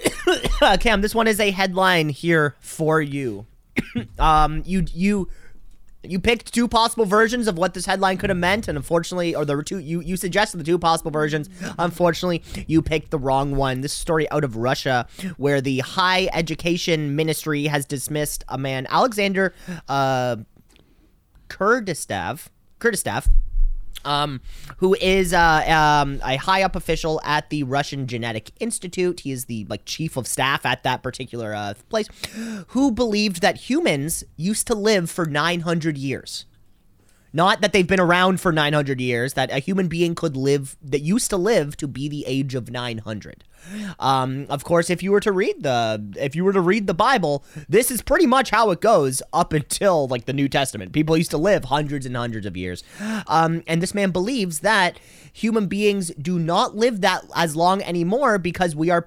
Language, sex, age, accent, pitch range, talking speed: English, male, 30-49, American, 130-185 Hz, 180 wpm